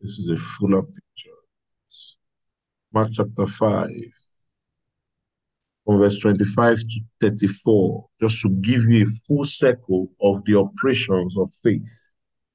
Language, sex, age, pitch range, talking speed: English, male, 50-69, 100-120 Hz, 115 wpm